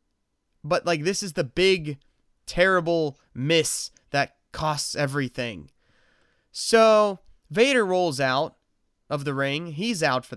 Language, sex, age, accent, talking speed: English, male, 20-39, American, 120 wpm